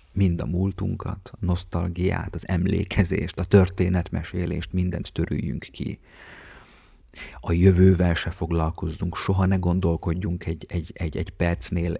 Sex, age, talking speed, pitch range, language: male, 30-49, 120 wpm, 85-95 Hz, Hungarian